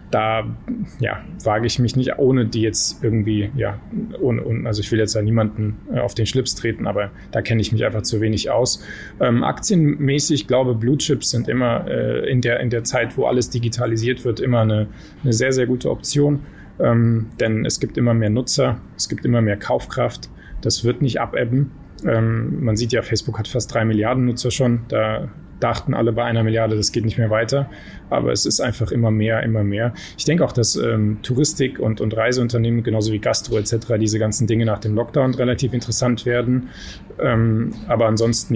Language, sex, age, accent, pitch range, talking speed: German, male, 20-39, German, 110-125 Hz, 195 wpm